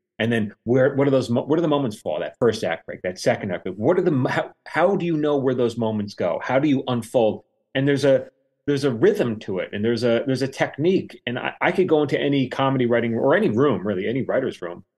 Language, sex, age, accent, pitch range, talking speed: English, male, 30-49, American, 105-135 Hz, 260 wpm